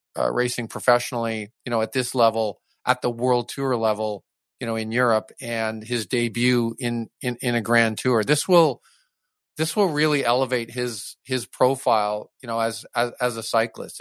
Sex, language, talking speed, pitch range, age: male, English, 180 wpm, 115-140 Hz, 40-59